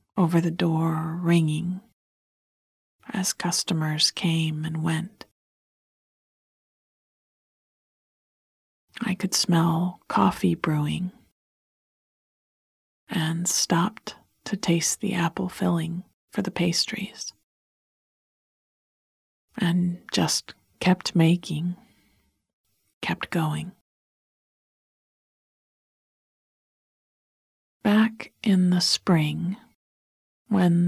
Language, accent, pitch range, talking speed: English, American, 160-185 Hz, 70 wpm